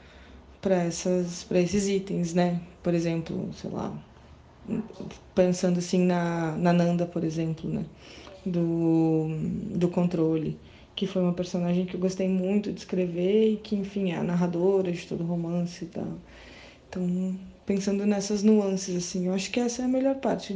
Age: 20-39